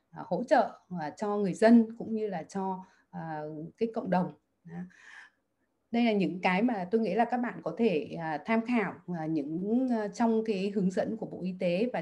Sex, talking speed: female, 180 wpm